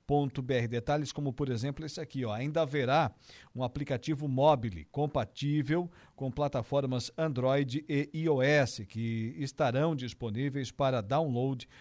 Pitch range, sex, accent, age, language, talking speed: 120-145 Hz, male, Brazilian, 50-69, Portuguese, 125 wpm